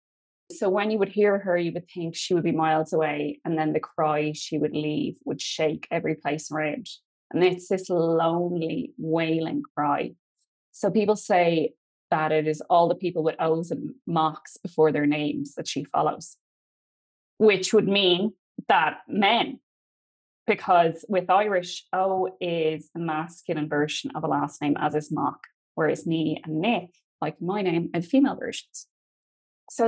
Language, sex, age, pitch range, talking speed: English, female, 20-39, 155-185 Hz, 170 wpm